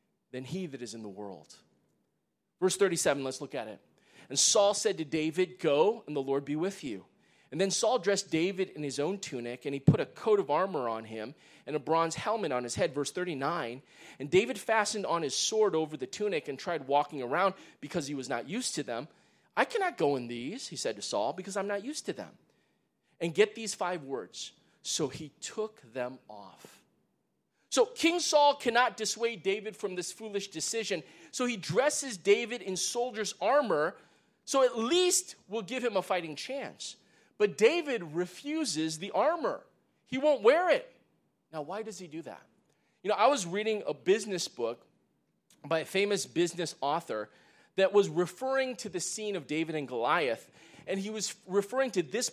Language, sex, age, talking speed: English, male, 30-49, 190 wpm